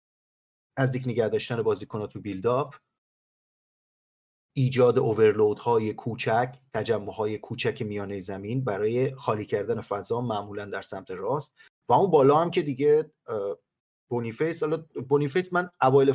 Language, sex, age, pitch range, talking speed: Persian, male, 30-49, 120-150 Hz, 120 wpm